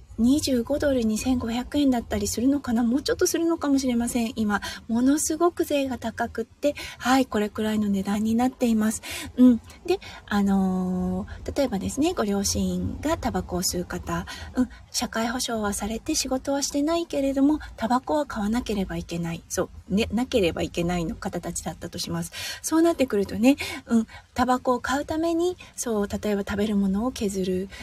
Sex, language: female, Japanese